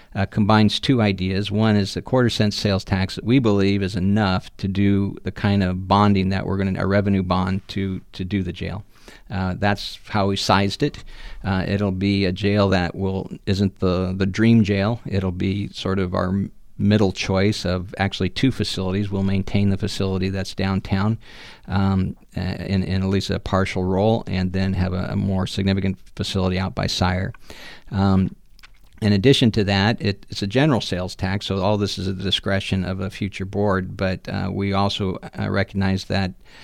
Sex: male